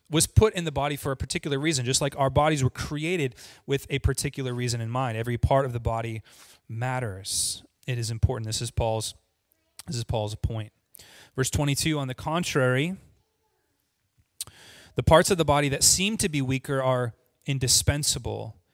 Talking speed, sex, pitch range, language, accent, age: 175 wpm, male, 115-155 Hz, English, American, 30-49